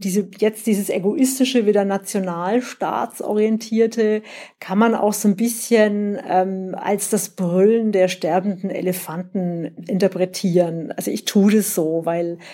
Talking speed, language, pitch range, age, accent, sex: 125 wpm, German, 180-225 Hz, 50-69, German, female